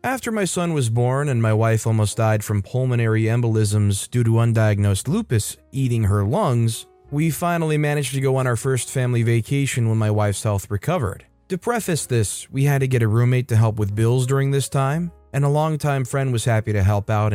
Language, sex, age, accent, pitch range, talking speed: English, male, 20-39, American, 110-140 Hz, 210 wpm